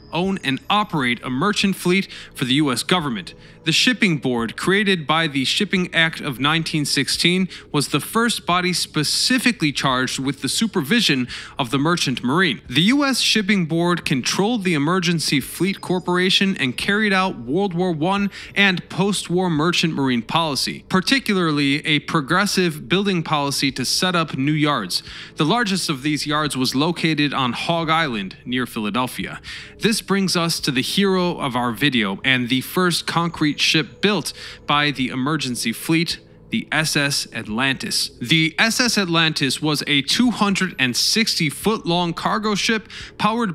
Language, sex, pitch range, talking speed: English, male, 145-195 Hz, 150 wpm